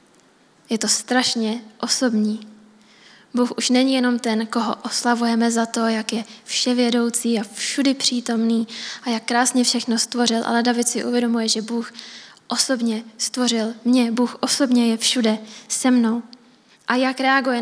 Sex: female